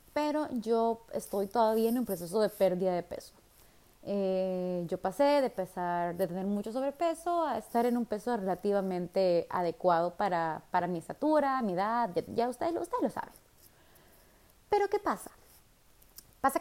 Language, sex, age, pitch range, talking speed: Spanish, female, 20-39, 185-245 Hz, 150 wpm